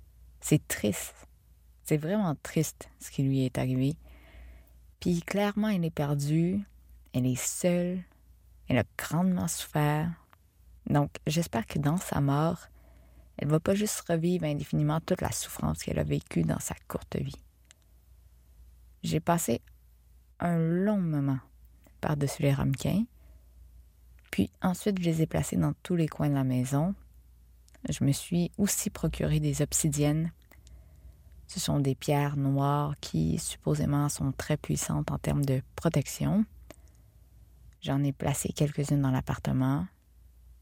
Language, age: French, 20-39